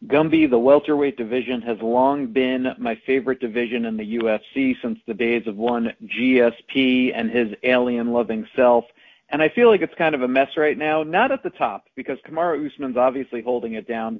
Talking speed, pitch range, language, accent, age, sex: 195 wpm, 120-155 Hz, English, American, 50-69, male